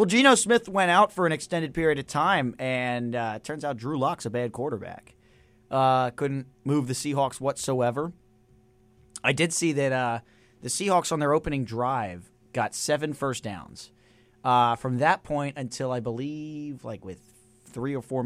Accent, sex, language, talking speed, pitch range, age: American, male, English, 175 wpm, 120-150 Hz, 30-49